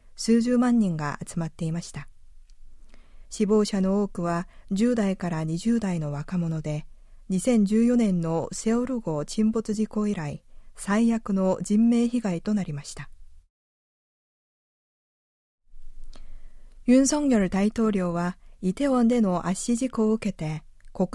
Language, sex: Japanese, female